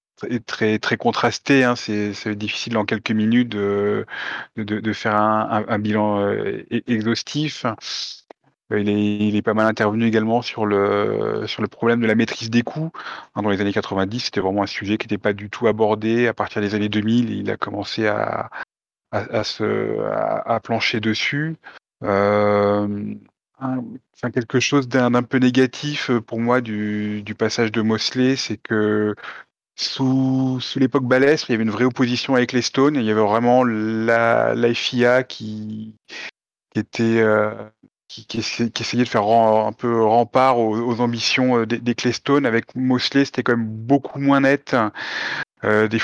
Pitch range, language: 105-120 Hz, French